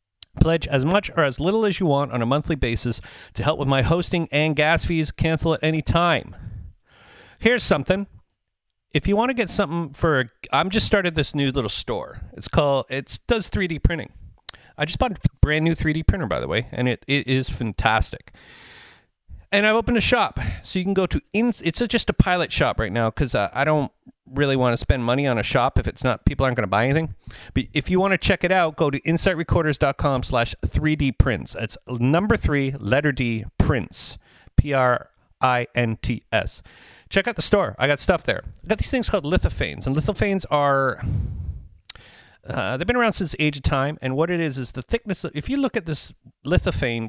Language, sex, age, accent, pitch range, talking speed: English, male, 40-59, American, 115-170 Hz, 205 wpm